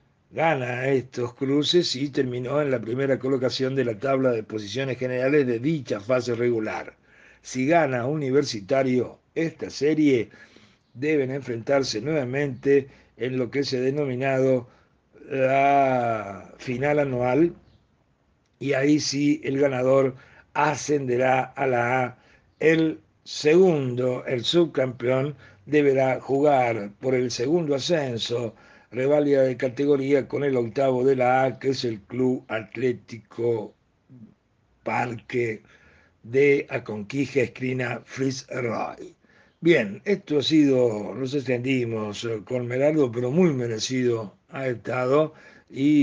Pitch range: 120-140 Hz